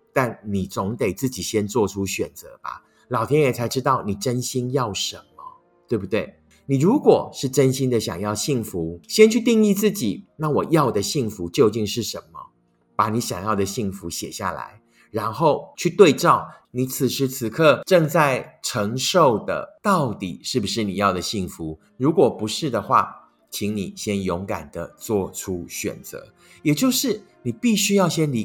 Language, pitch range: Chinese, 100-145 Hz